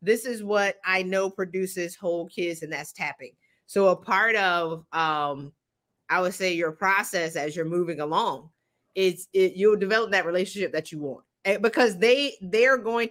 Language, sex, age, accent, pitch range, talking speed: English, female, 30-49, American, 155-205 Hz, 180 wpm